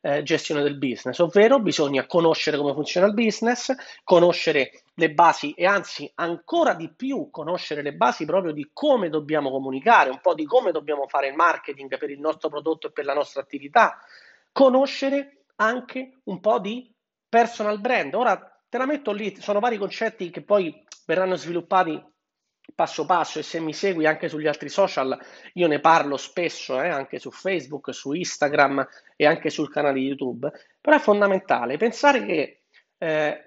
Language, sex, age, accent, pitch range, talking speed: Italian, male, 30-49, native, 150-220 Hz, 170 wpm